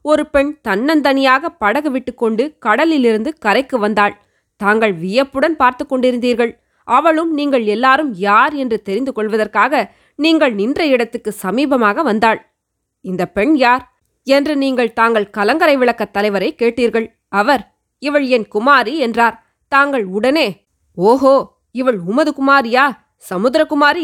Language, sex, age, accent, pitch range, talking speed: Tamil, female, 20-39, native, 215-280 Hz, 115 wpm